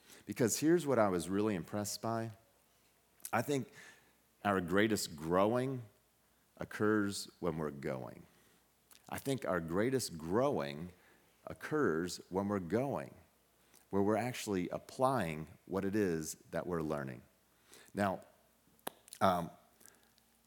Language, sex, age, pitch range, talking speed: English, male, 40-59, 90-115 Hz, 110 wpm